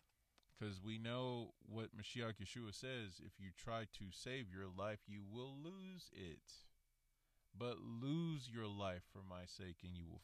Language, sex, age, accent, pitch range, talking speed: English, male, 30-49, American, 95-130 Hz, 165 wpm